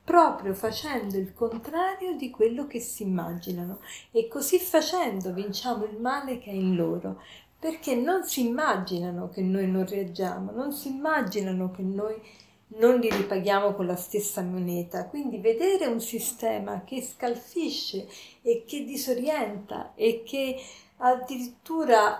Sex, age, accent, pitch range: female, 50-69, native, 200-260 Hz